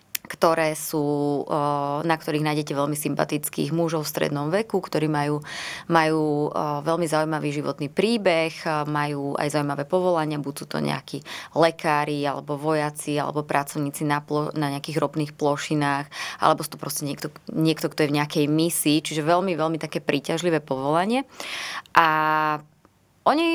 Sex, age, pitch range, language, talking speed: female, 20-39, 150-165 Hz, Slovak, 145 wpm